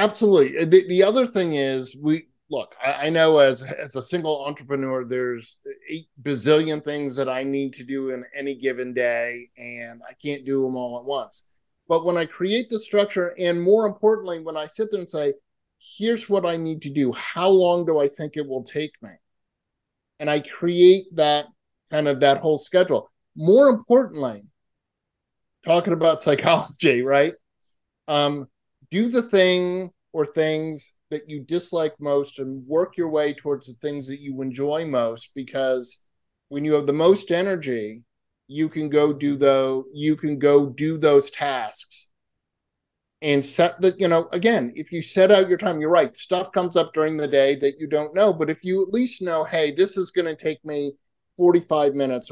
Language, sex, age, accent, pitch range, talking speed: English, male, 30-49, American, 135-175 Hz, 185 wpm